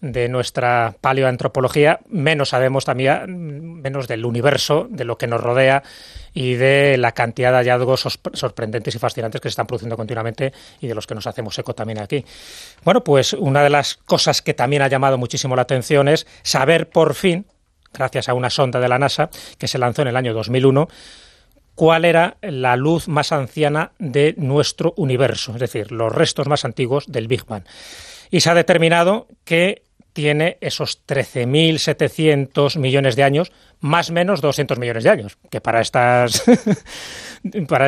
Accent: Spanish